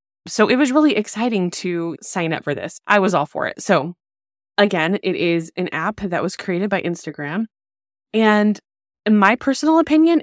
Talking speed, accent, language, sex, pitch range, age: 180 wpm, American, English, female, 160-200 Hz, 20-39